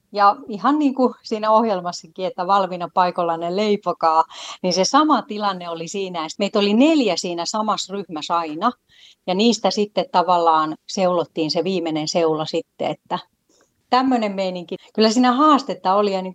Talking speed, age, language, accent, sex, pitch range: 155 wpm, 30-49, Finnish, native, female, 170-235 Hz